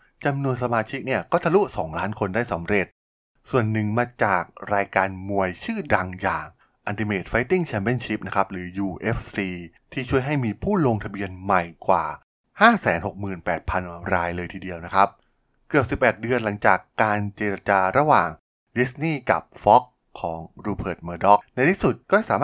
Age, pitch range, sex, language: 20-39, 95-120 Hz, male, Thai